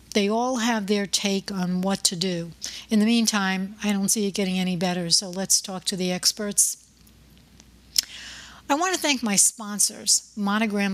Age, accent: 60-79, American